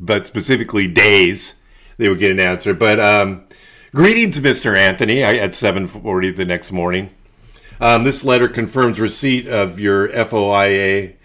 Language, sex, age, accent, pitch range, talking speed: English, male, 50-69, American, 100-125 Hz, 140 wpm